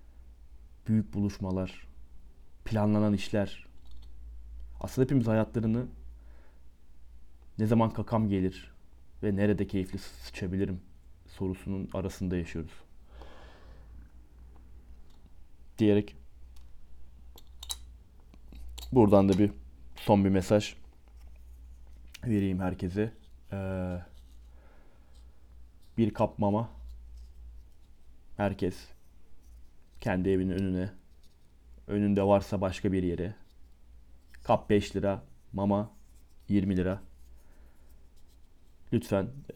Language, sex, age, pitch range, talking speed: Turkish, male, 30-49, 65-100 Hz, 70 wpm